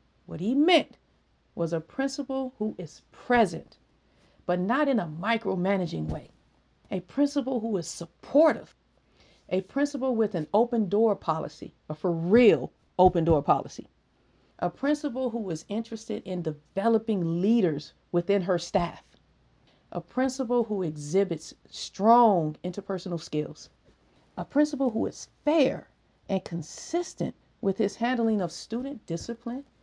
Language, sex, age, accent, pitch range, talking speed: English, female, 50-69, American, 165-235 Hz, 130 wpm